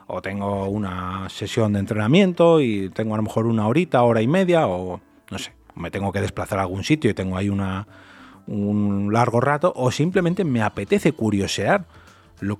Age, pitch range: 30-49, 105-140 Hz